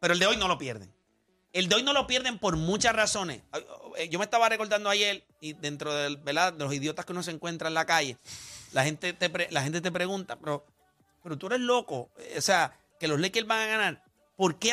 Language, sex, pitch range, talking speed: Spanish, male, 160-230 Hz, 230 wpm